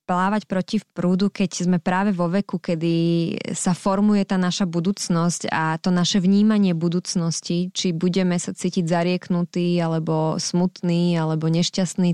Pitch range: 170-190 Hz